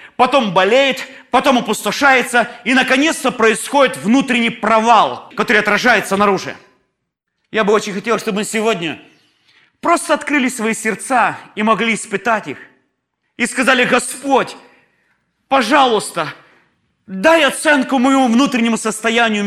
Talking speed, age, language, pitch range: 110 wpm, 30-49, Russian, 220-280 Hz